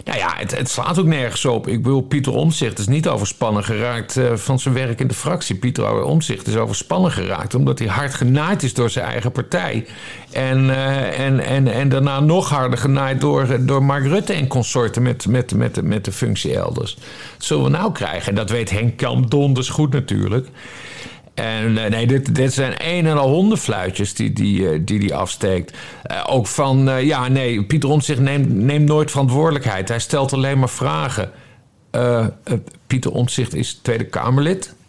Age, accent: 50-69, Dutch